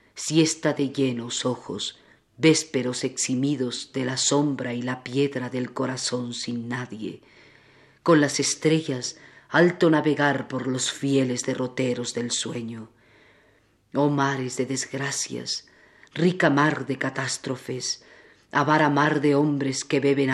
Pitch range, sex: 125-150 Hz, female